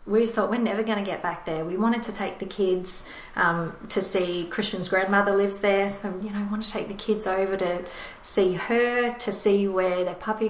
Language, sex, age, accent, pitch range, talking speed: English, female, 30-49, Australian, 175-205 Hz, 230 wpm